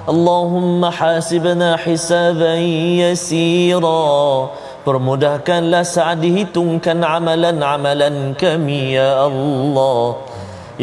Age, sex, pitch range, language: 30-49, male, 135-165 Hz, Malayalam